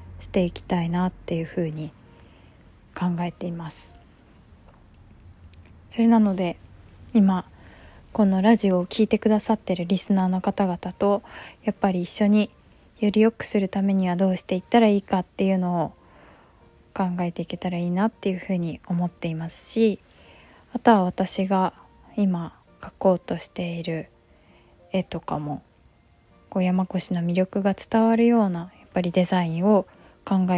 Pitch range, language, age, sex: 170-200 Hz, Japanese, 20-39, female